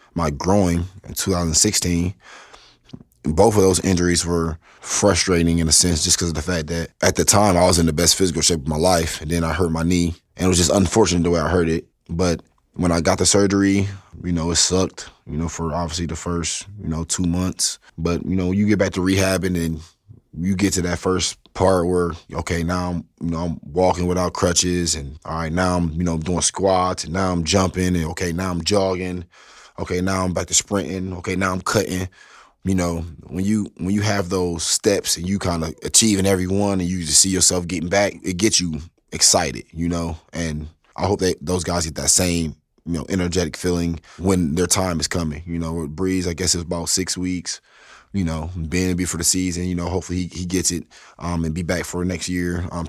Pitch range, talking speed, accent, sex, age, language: 85-95 Hz, 230 wpm, American, male, 20-39, English